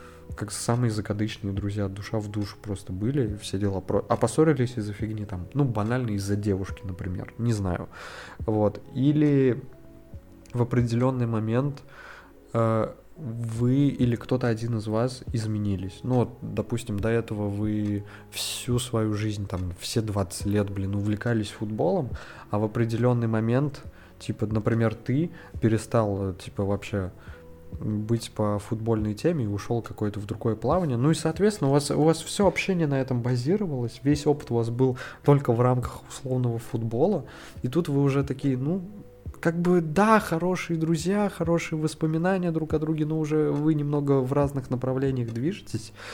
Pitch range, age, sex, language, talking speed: 105-140 Hz, 20-39, male, Russian, 150 wpm